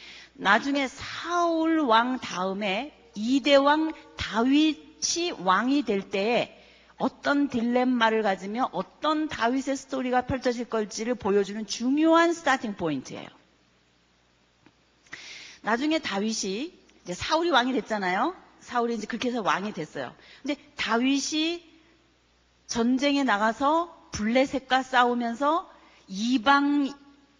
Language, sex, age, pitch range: Korean, female, 40-59, 205-295 Hz